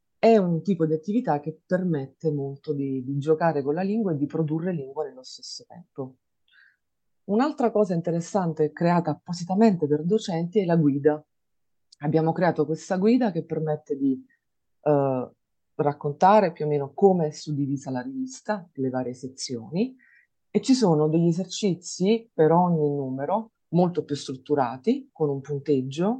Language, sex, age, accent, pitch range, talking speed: Italian, female, 30-49, native, 140-190 Hz, 145 wpm